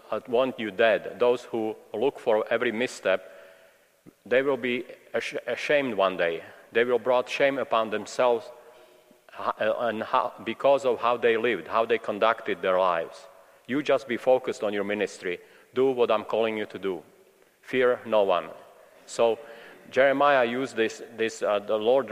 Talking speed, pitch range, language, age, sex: 155 wpm, 115-140 Hz, English, 40-59, male